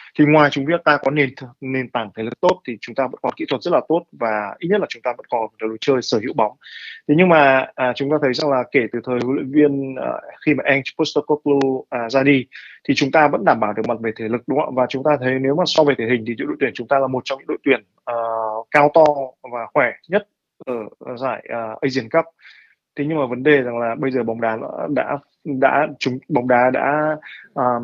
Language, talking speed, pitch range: Vietnamese, 265 wpm, 120-150 Hz